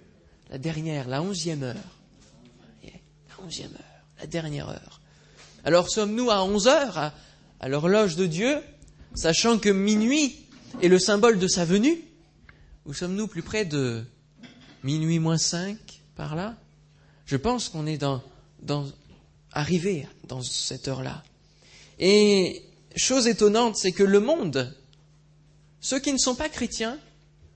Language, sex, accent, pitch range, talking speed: French, male, French, 145-215 Hz, 135 wpm